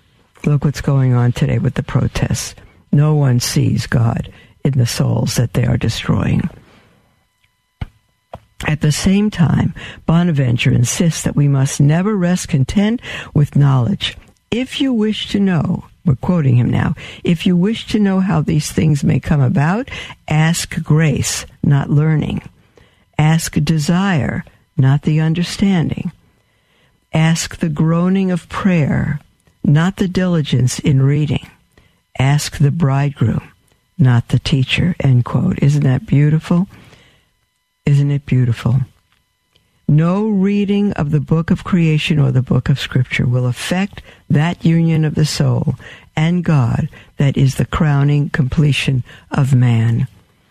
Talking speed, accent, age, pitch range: 135 wpm, American, 60-79, 130-170 Hz